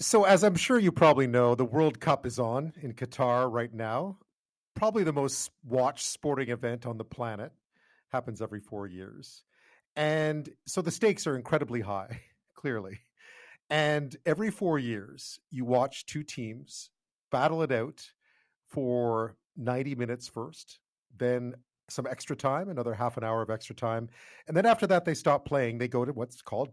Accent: American